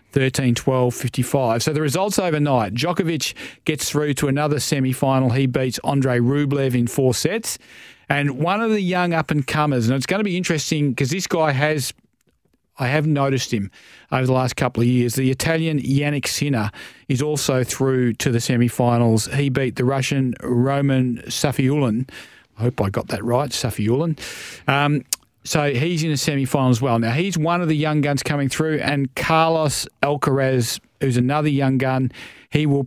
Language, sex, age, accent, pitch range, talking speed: English, male, 40-59, Australian, 125-145 Hz, 175 wpm